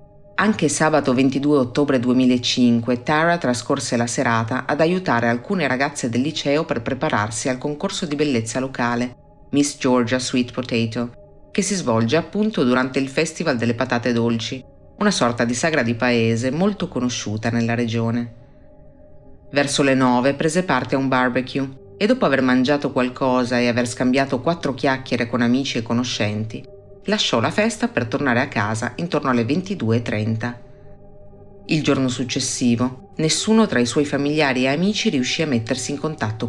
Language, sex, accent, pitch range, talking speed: Italian, female, native, 120-145 Hz, 155 wpm